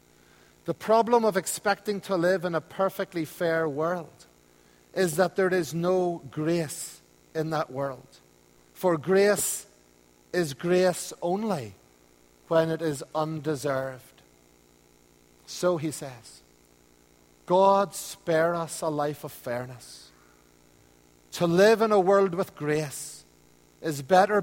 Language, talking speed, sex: English, 120 wpm, male